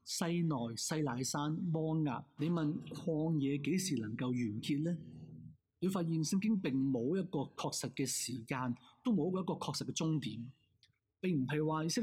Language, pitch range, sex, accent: Chinese, 125-160 Hz, male, native